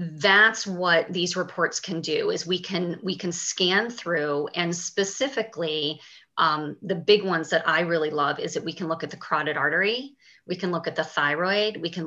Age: 30-49